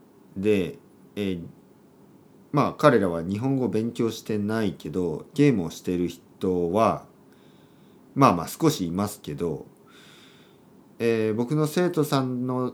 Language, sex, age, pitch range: Japanese, male, 50-69, 95-155 Hz